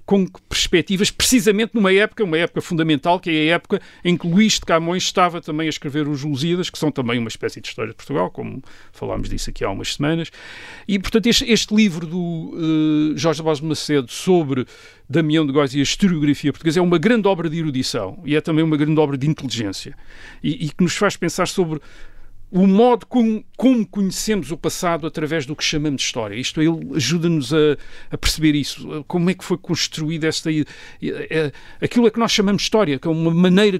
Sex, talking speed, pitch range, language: male, 200 wpm, 140-180 Hz, Portuguese